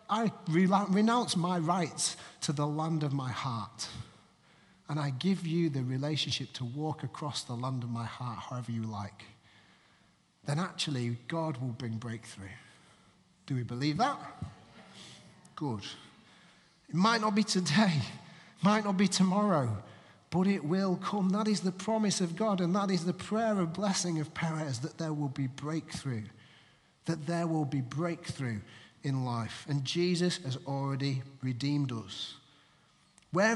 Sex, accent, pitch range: male, British, 135-185 Hz